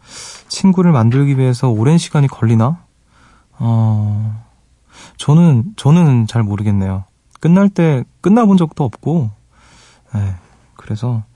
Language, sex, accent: Korean, male, native